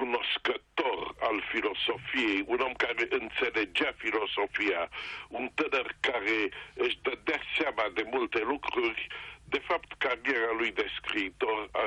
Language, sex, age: English, male, 60-79